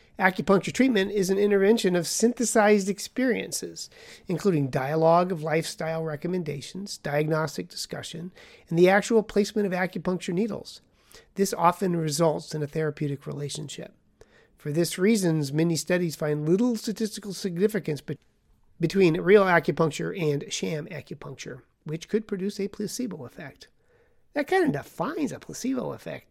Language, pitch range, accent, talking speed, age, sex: English, 160-205 Hz, American, 130 wpm, 40-59, male